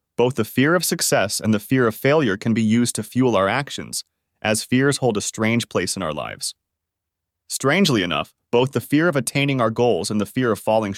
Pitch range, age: 100-140 Hz, 30-49